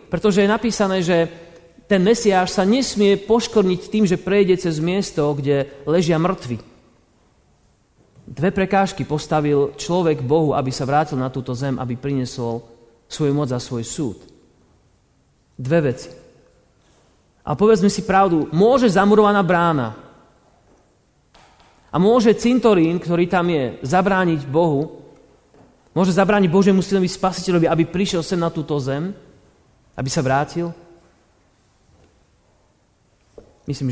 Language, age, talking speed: Slovak, 30-49, 120 wpm